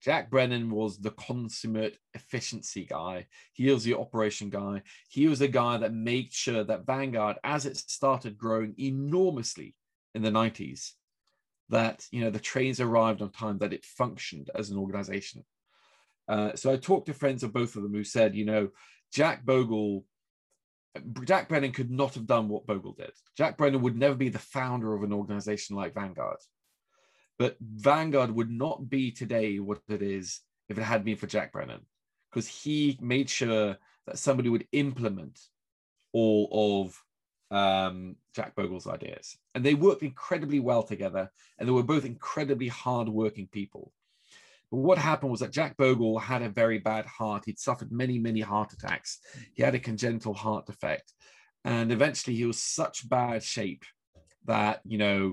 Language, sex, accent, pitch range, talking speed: English, male, British, 105-130 Hz, 170 wpm